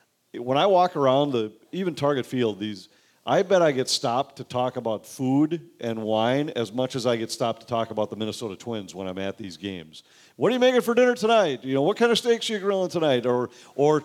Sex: male